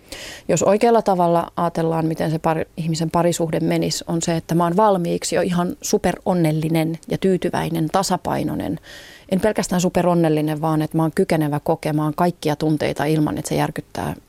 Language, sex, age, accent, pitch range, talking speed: Finnish, female, 30-49, native, 155-190 Hz, 150 wpm